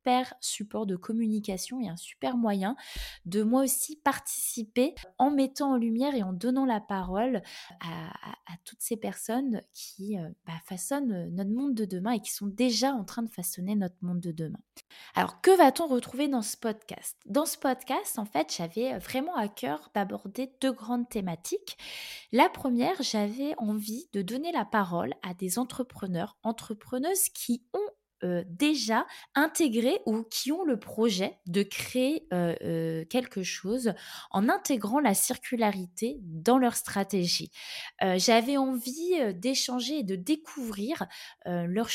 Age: 20-39